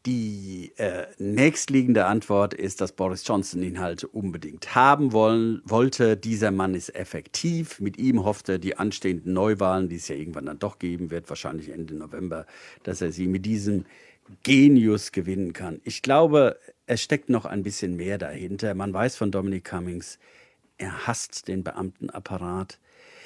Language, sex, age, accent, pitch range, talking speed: German, male, 50-69, German, 95-120 Hz, 155 wpm